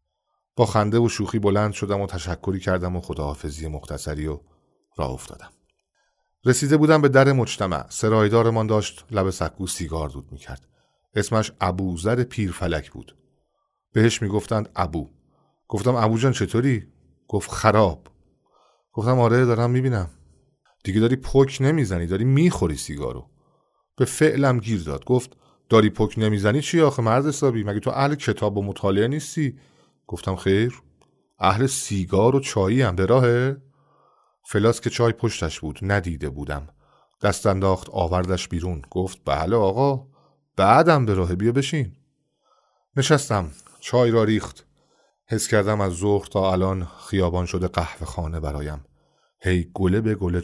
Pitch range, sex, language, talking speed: 90-120 Hz, male, Persian, 140 wpm